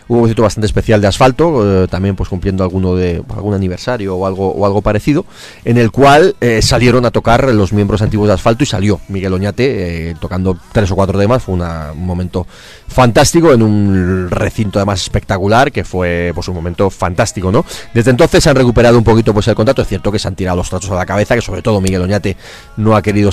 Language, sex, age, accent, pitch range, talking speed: Spanish, male, 30-49, Spanish, 95-115 Hz, 225 wpm